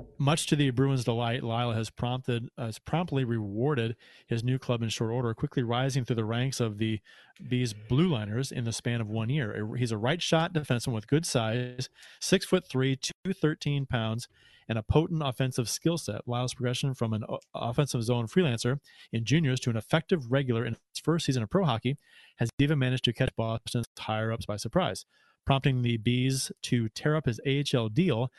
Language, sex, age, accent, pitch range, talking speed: English, male, 30-49, American, 115-140 Hz, 190 wpm